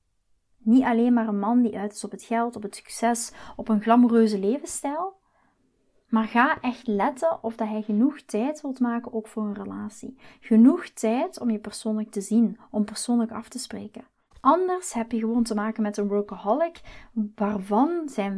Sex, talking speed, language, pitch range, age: female, 180 wpm, Dutch, 210-245 Hz, 30-49